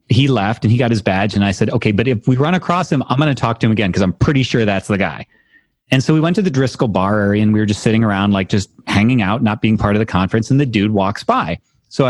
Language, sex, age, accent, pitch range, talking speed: English, male, 30-49, American, 100-130 Hz, 310 wpm